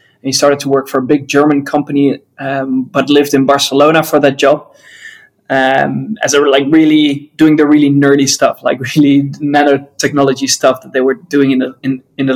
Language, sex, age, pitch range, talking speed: English, male, 20-39, 135-155 Hz, 200 wpm